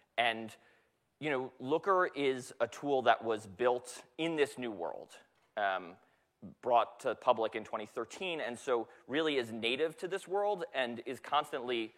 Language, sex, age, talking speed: English, male, 30-49, 155 wpm